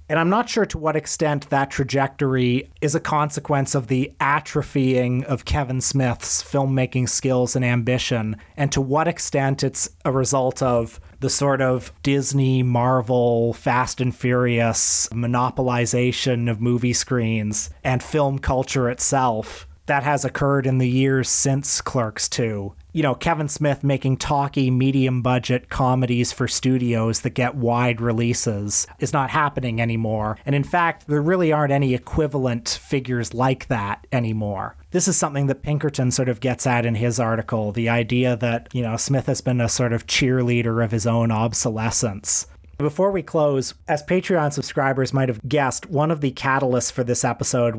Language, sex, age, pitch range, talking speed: English, male, 30-49, 115-140 Hz, 160 wpm